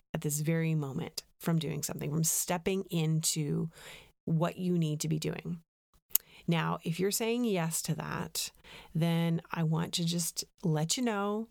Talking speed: 160 wpm